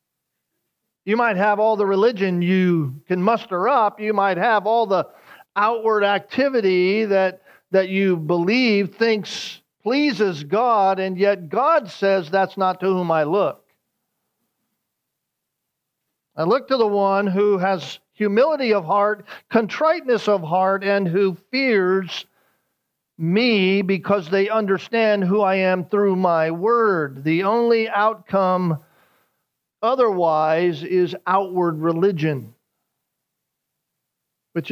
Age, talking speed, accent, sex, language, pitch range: 50-69, 120 wpm, American, male, English, 165-215 Hz